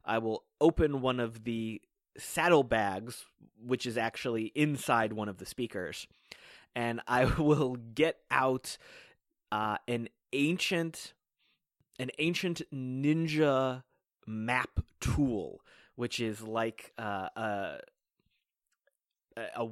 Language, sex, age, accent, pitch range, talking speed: English, male, 20-39, American, 110-135 Hz, 105 wpm